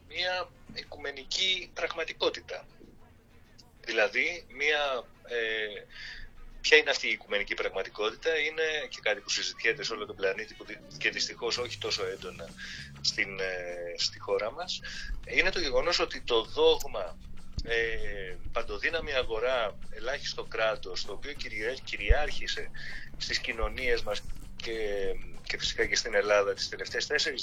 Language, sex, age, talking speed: Greek, male, 30-49, 130 wpm